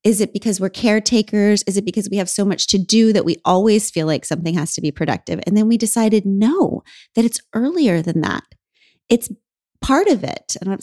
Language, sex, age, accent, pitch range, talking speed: English, female, 30-49, American, 170-215 Hz, 225 wpm